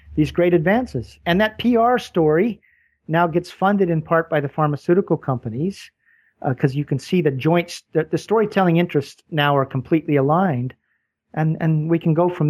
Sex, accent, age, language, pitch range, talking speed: male, American, 40-59, English, 145-180 Hz, 180 wpm